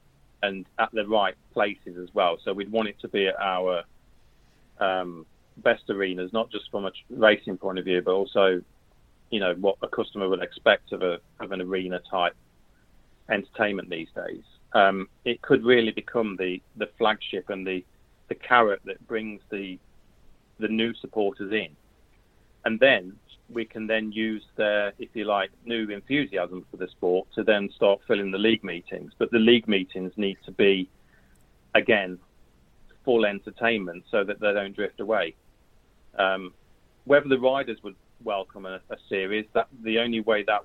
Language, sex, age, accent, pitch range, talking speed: English, male, 40-59, British, 95-110 Hz, 170 wpm